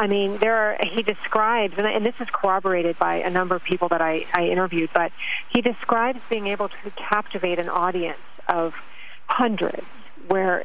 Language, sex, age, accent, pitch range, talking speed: English, female, 40-59, American, 175-210 Hz, 175 wpm